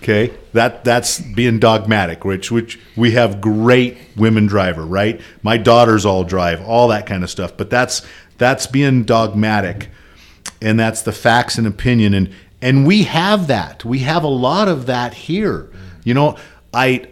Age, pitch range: 50-69, 105-135 Hz